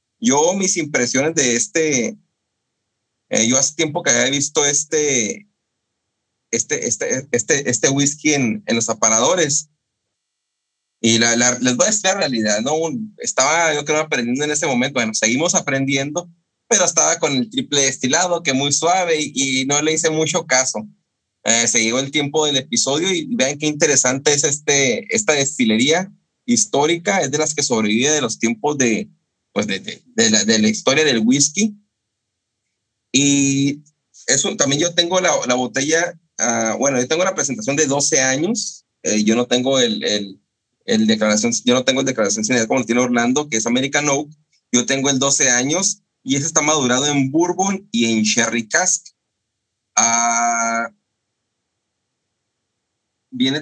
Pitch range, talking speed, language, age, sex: 115-165 Hz, 165 wpm, Spanish, 30-49, male